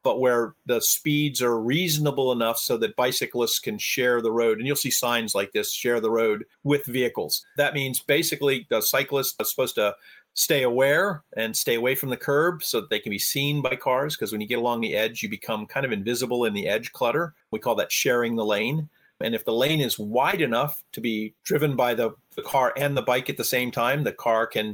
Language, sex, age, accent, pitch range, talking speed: English, male, 40-59, American, 115-140 Hz, 230 wpm